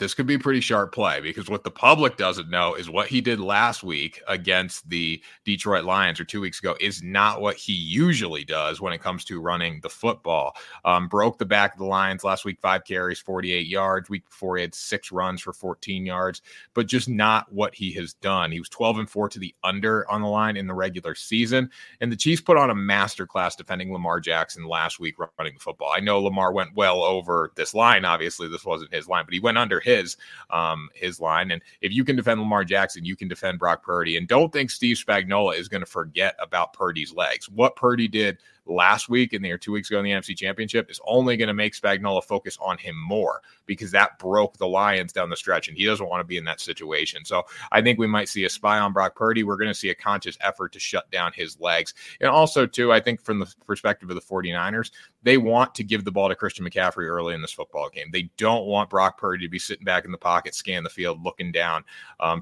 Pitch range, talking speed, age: 90-110 Hz, 240 wpm, 30-49